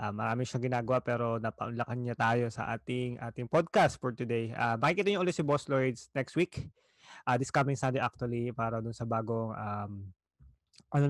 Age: 20-39